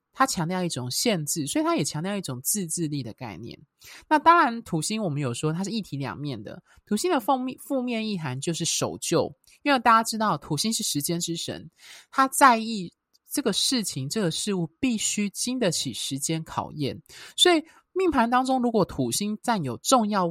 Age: 20-39